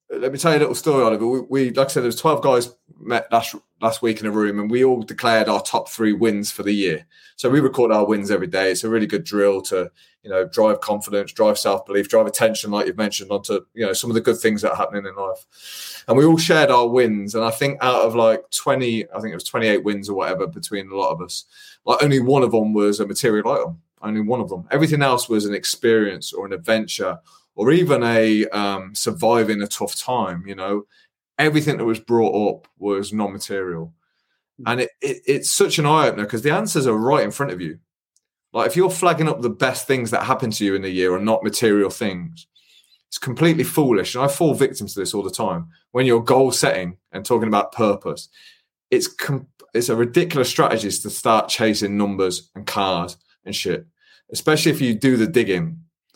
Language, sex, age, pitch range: English, male, 20-39, 105-140 Hz